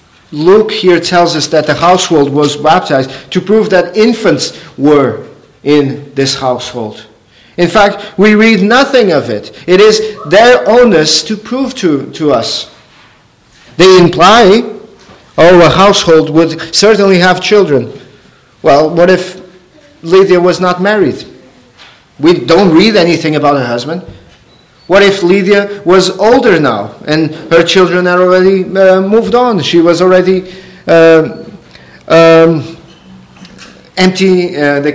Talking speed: 135 wpm